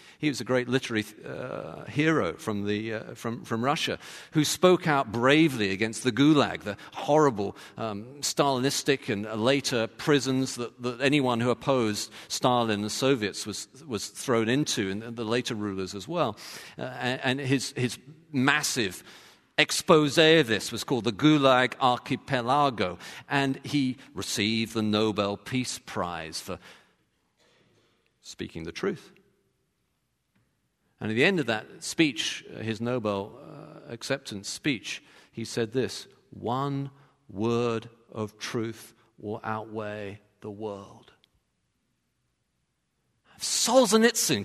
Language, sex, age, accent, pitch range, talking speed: English, male, 50-69, British, 110-155 Hz, 125 wpm